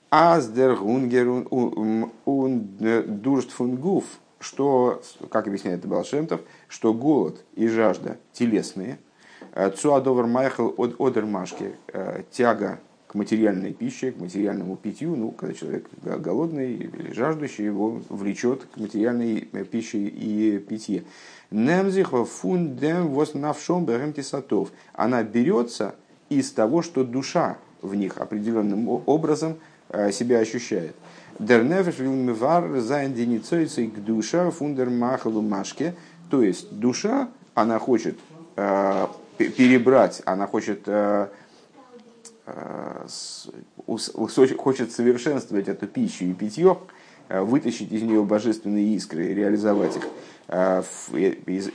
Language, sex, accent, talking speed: Russian, male, native, 75 wpm